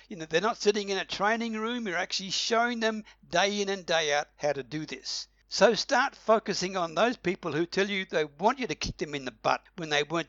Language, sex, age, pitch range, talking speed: English, male, 60-79, 150-215 Hz, 250 wpm